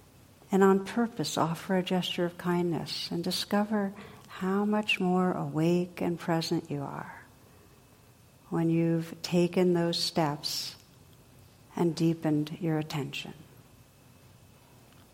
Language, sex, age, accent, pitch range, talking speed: English, female, 60-79, American, 160-200 Hz, 105 wpm